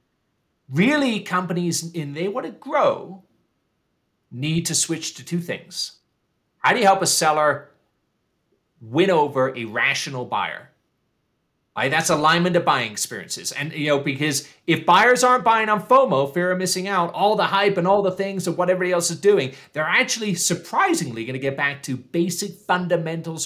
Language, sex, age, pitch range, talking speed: English, male, 30-49, 140-180 Hz, 170 wpm